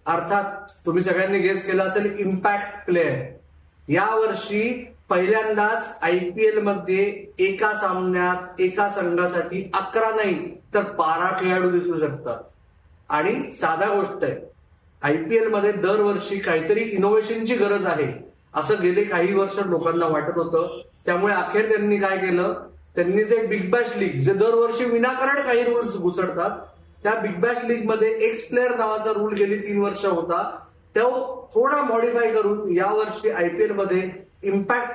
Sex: male